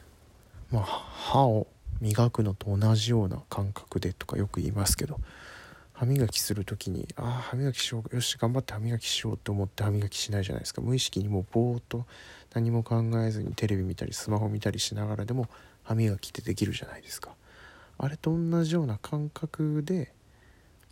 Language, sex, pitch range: Japanese, male, 100-120 Hz